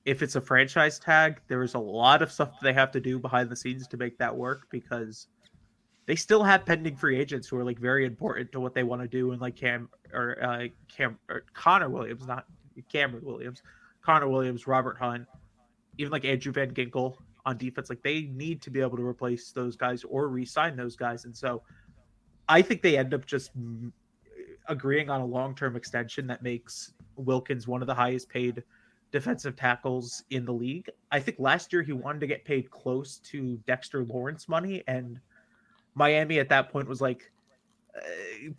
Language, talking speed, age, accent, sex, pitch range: English, 195 wpm, 20-39, American, male, 125-155 Hz